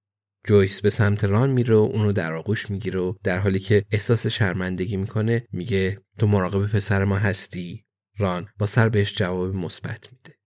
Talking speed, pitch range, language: 160 wpm, 100-120 Hz, Persian